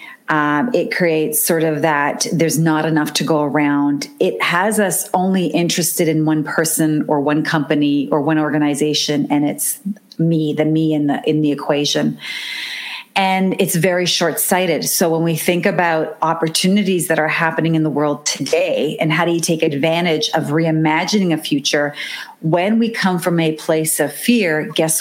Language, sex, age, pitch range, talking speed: English, female, 40-59, 155-180 Hz, 175 wpm